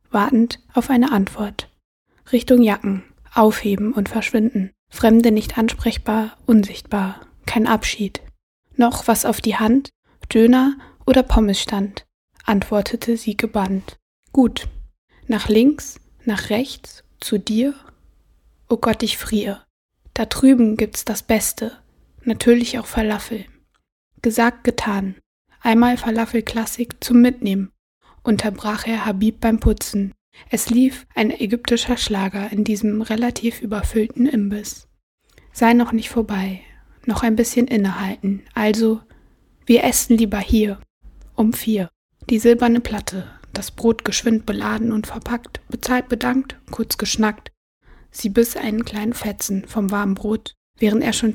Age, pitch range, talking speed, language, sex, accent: 20-39, 210-235 Hz, 125 wpm, German, female, German